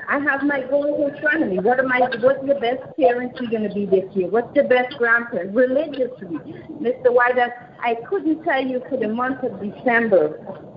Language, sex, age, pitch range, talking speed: English, female, 30-49, 225-285 Hz, 205 wpm